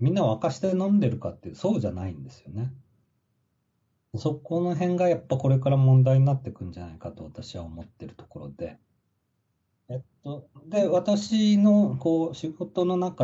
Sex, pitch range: male, 105-140 Hz